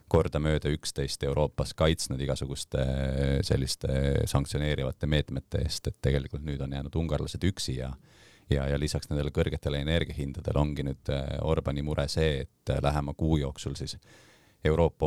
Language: English